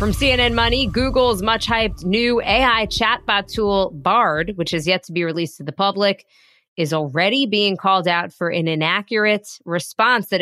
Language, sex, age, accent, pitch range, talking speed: English, female, 30-49, American, 170-220 Hz, 165 wpm